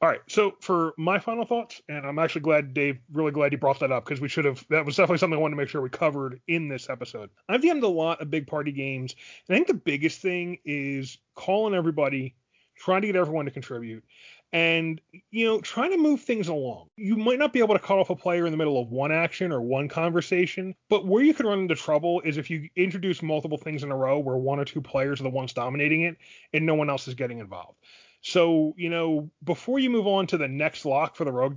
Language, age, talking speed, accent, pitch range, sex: English, 30-49, 255 wpm, American, 145-195 Hz, male